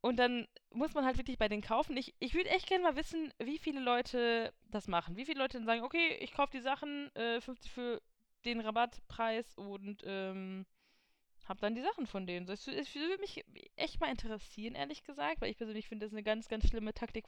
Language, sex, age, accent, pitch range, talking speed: German, female, 20-39, German, 205-255 Hz, 220 wpm